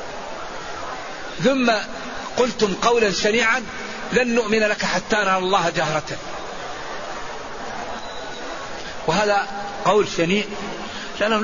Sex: male